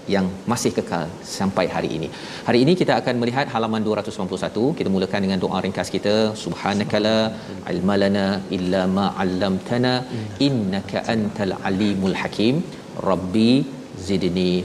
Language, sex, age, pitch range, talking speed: Malayalam, male, 40-59, 105-125 Hz, 120 wpm